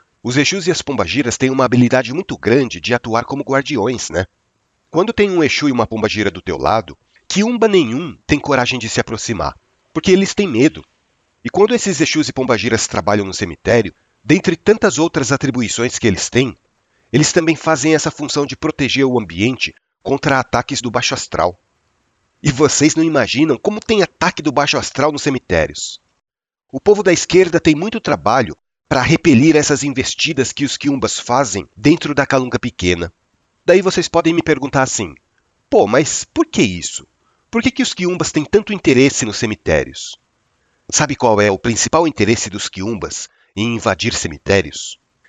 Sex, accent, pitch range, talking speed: male, Brazilian, 115-160 Hz, 170 wpm